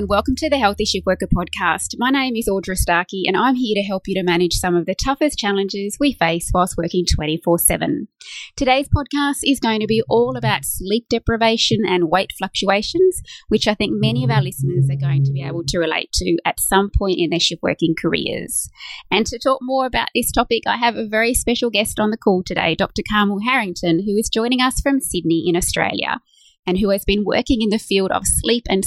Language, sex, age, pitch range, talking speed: English, female, 20-39, 180-235 Hz, 215 wpm